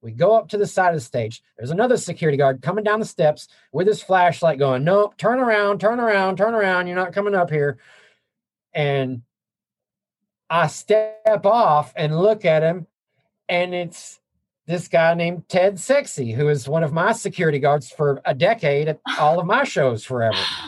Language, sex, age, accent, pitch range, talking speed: English, male, 40-59, American, 140-200 Hz, 185 wpm